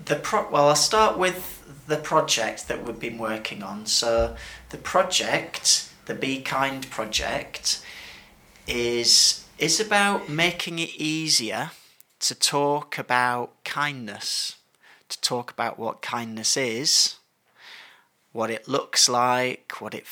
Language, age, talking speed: English, 30-49, 125 wpm